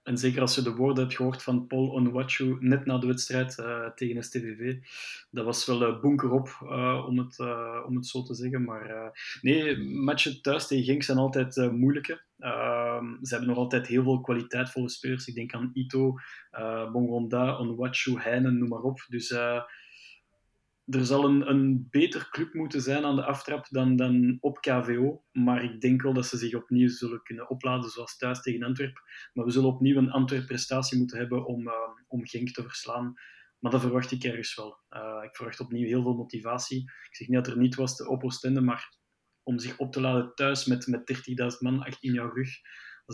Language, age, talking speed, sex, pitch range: Dutch, 20-39, 205 wpm, male, 120-130 Hz